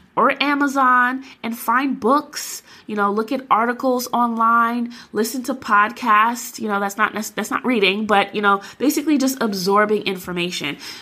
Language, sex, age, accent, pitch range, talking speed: English, female, 20-39, American, 185-235 Hz, 150 wpm